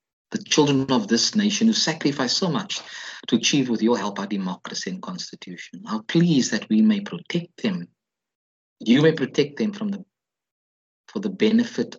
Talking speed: 170 wpm